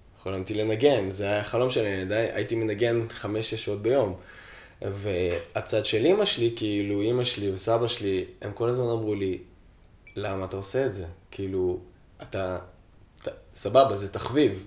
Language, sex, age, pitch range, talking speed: Hebrew, male, 20-39, 100-120 Hz, 145 wpm